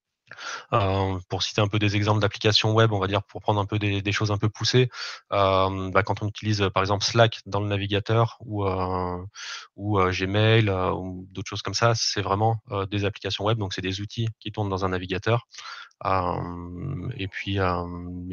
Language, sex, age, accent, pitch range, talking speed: French, male, 20-39, French, 95-110 Hz, 205 wpm